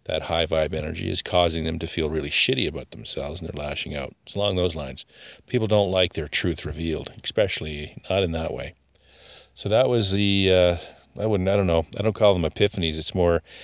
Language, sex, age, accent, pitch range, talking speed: English, male, 40-59, American, 80-100 Hz, 215 wpm